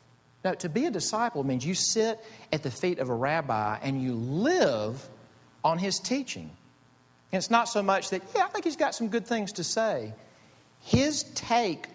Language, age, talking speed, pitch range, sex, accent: English, 50-69, 190 wpm, 105-170 Hz, male, American